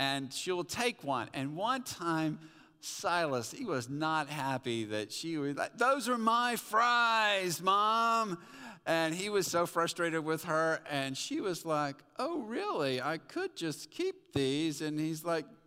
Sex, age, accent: male, 50-69, American